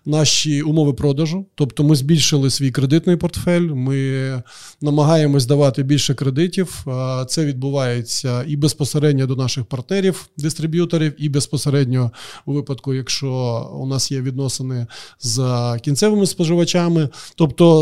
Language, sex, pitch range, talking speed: Ukrainian, male, 135-165 Hz, 115 wpm